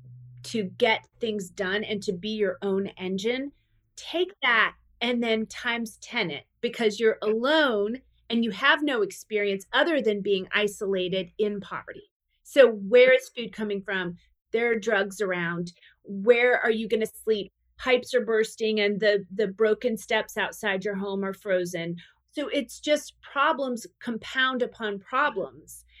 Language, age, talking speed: English, 30-49, 150 wpm